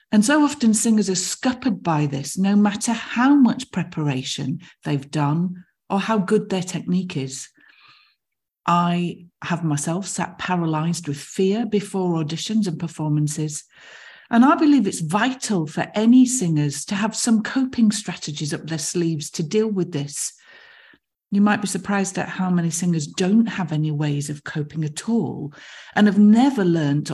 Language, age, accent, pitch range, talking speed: English, 40-59, British, 155-210 Hz, 160 wpm